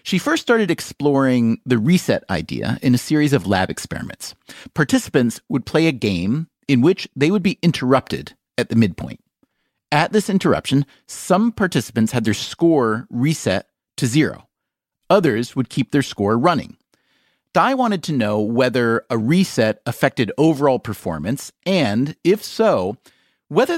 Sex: male